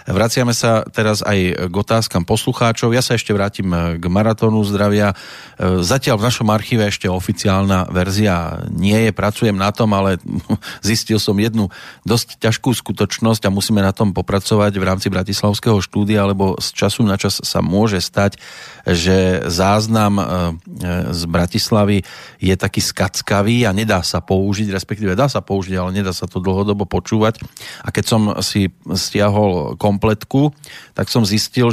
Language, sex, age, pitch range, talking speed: Slovak, male, 30-49, 95-110 Hz, 150 wpm